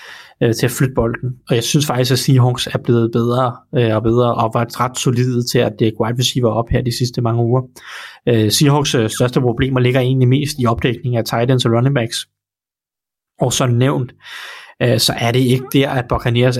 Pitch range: 120-135 Hz